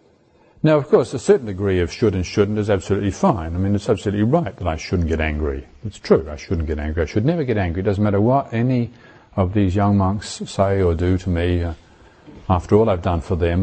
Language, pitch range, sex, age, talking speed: English, 90-120 Hz, male, 50-69, 240 wpm